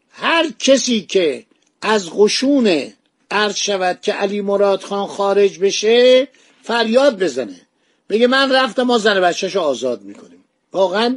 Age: 50-69